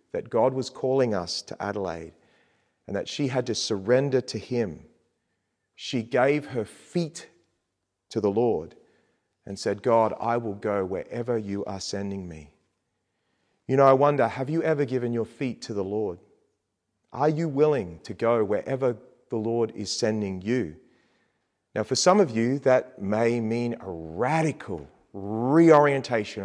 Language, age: English, 40-59